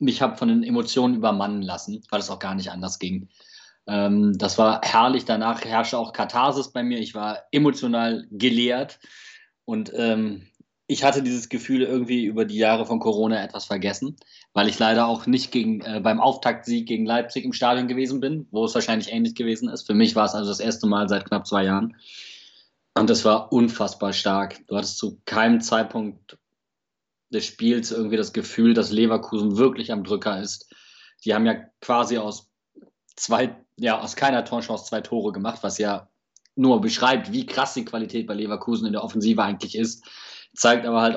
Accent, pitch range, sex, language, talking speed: German, 105-120 Hz, male, German, 185 wpm